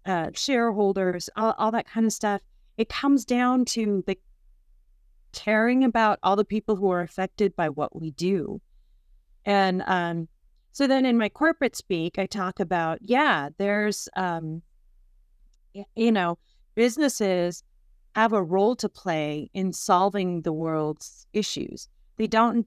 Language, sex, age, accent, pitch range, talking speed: English, female, 30-49, American, 180-225 Hz, 145 wpm